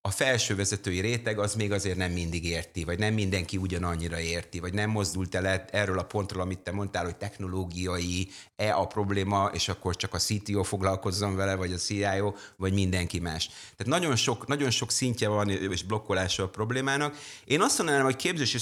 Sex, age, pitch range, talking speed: male, 30-49, 95-115 Hz, 185 wpm